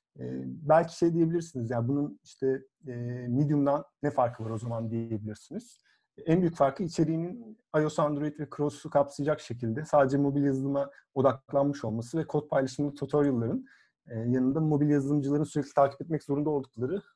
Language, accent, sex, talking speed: Turkish, native, male, 150 wpm